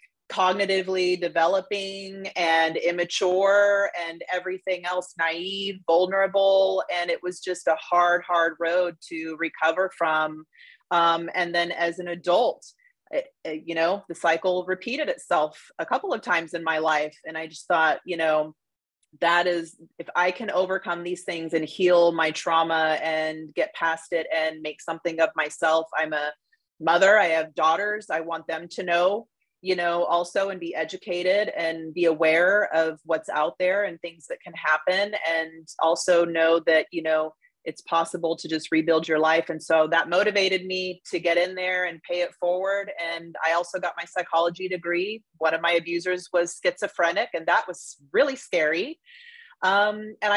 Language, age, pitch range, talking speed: English, 30-49, 165-185 Hz, 170 wpm